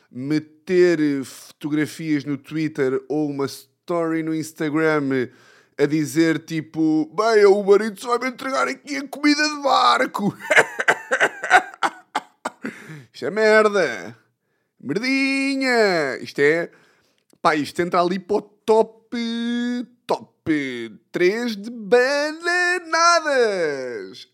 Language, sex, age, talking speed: Portuguese, male, 20-39, 100 wpm